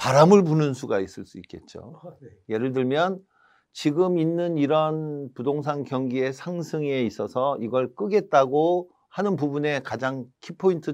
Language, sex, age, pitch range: Korean, male, 50-69, 130-170 Hz